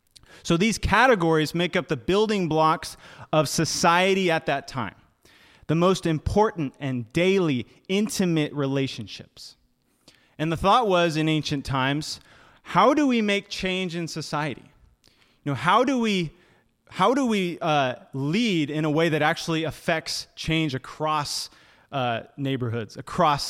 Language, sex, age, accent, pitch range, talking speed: English, male, 30-49, American, 130-180 Hz, 140 wpm